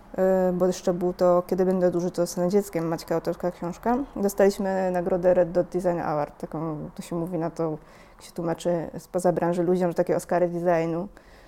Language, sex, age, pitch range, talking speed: Polish, female, 20-39, 175-200 Hz, 185 wpm